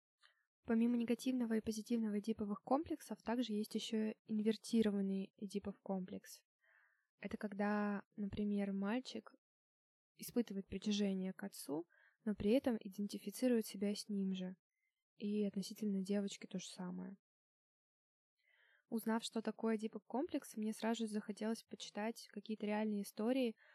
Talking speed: 115 wpm